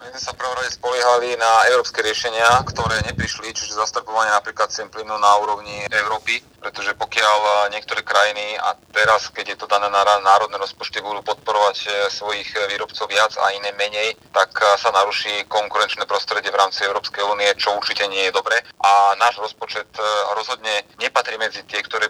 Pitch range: 100-110 Hz